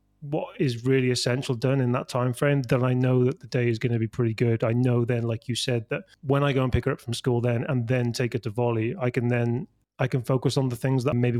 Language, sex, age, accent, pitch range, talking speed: English, male, 30-49, British, 115-135 Hz, 290 wpm